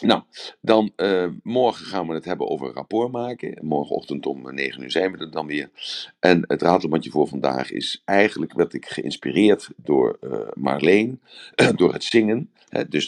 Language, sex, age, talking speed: Dutch, male, 50-69, 180 wpm